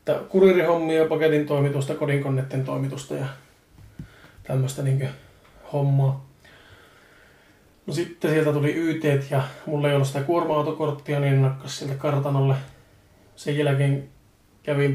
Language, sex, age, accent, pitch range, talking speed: Finnish, male, 20-39, native, 130-150 Hz, 115 wpm